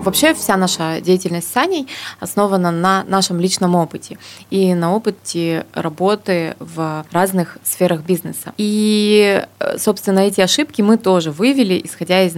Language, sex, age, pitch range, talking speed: Russian, female, 20-39, 175-220 Hz, 135 wpm